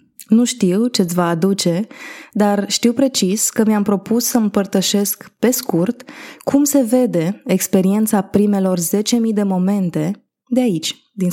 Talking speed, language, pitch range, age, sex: 140 wpm, Romanian, 185-235 Hz, 20-39, female